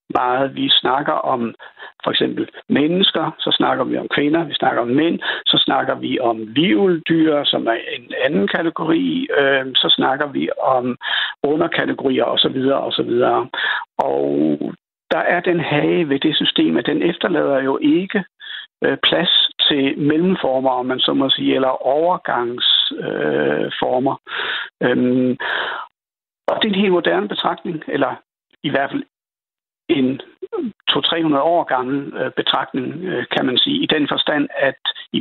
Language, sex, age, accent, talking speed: Danish, male, 60-79, native, 135 wpm